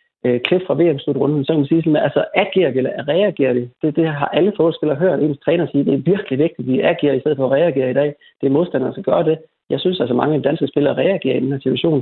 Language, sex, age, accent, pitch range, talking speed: Danish, male, 30-49, native, 130-155 Hz, 295 wpm